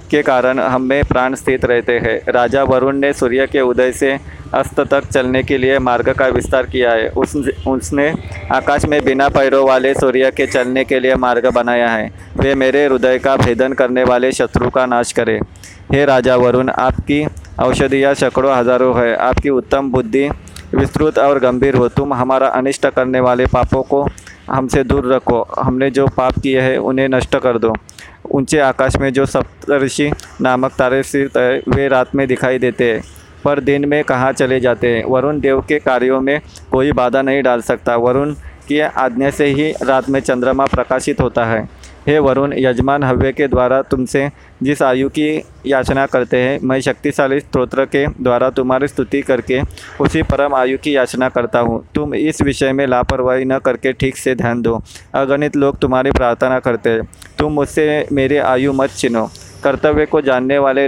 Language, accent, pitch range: Hindi, native, 125-140 Hz